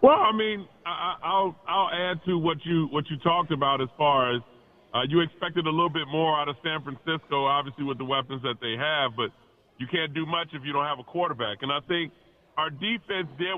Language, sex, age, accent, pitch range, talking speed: English, female, 30-49, American, 145-180 Hz, 230 wpm